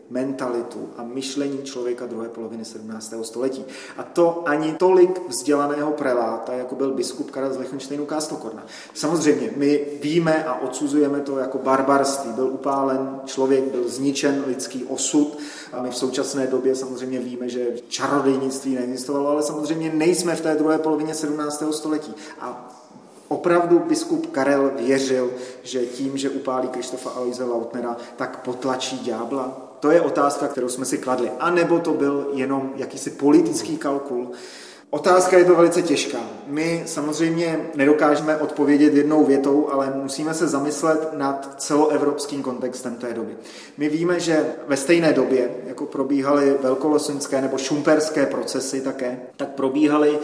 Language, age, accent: Czech, 30-49, native